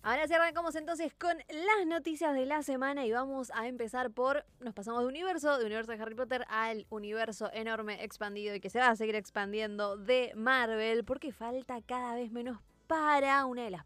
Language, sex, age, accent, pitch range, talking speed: Spanish, female, 20-39, Argentinian, 200-260 Hz, 200 wpm